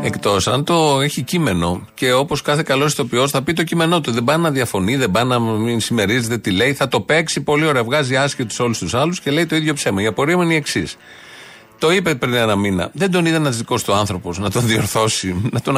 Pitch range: 115-165 Hz